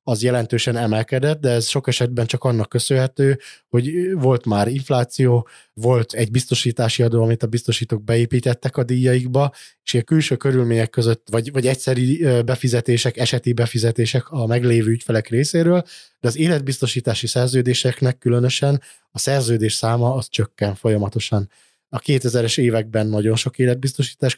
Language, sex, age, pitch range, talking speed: Hungarian, male, 20-39, 115-130 Hz, 140 wpm